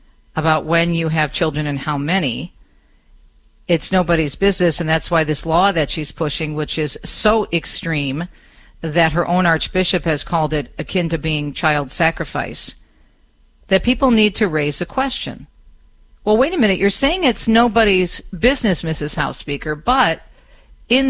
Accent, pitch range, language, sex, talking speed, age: American, 150-215 Hz, English, female, 160 wpm, 50-69